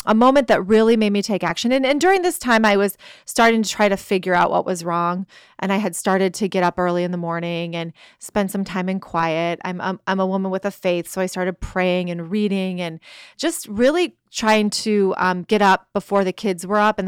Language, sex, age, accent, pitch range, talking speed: English, female, 30-49, American, 185-215 Hz, 240 wpm